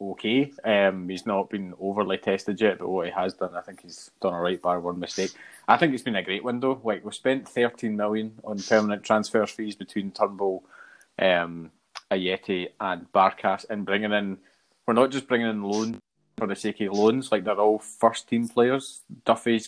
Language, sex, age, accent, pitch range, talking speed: English, male, 20-39, British, 95-110 Hz, 200 wpm